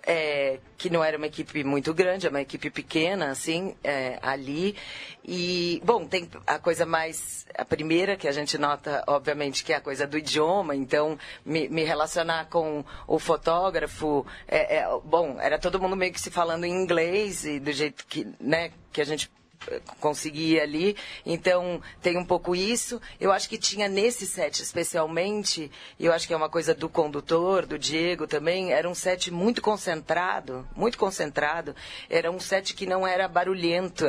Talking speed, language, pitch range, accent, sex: 170 wpm, Portuguese, 150-185 Hz, Brazilian, female